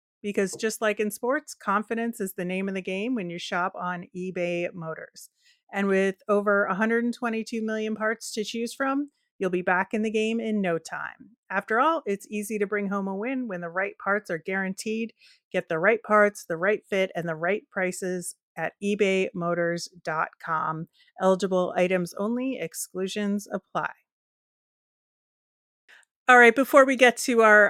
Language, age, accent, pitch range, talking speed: English, 30-49, American, 180-220 Hz, 165 wpm